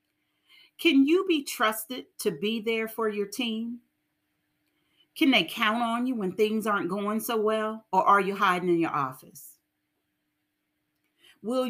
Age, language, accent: 40-59, English, American